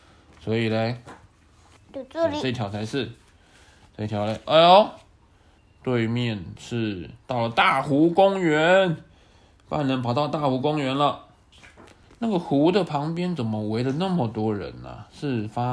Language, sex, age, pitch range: Chinese, male, 20-39, 105-155 Hz